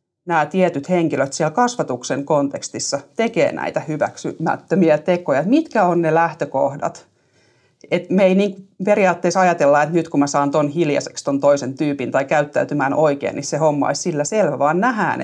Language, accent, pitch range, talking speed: Finnish, native, 145-195 Hz, 160 wpm